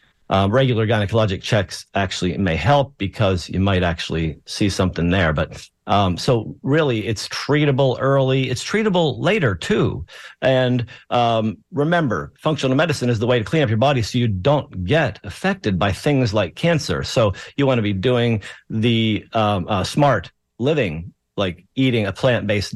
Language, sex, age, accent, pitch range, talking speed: English, male, 50-69, American, 100-135 Hz, 165 wpm